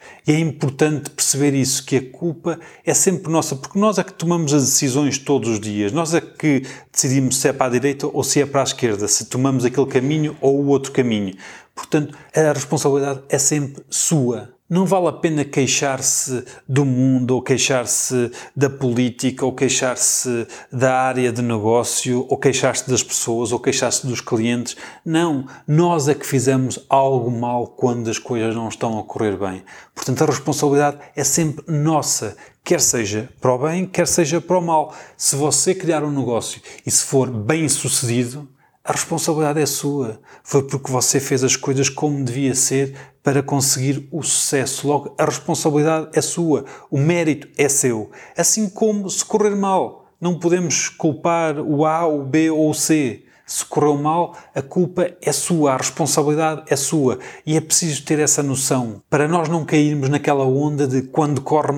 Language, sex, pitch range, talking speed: Portuguese, male, 130-155 Hz, 175 wpm